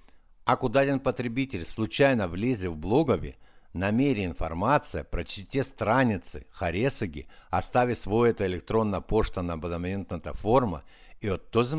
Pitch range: 90-125 Hz